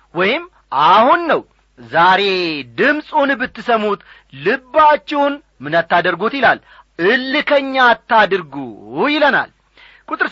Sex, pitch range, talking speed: male, 180-265 Hz, 75 wpm